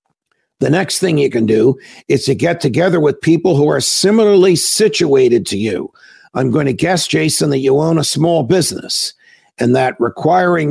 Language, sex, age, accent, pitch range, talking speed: English, male, 50-69, American, 145-180 Hz, 180 wpm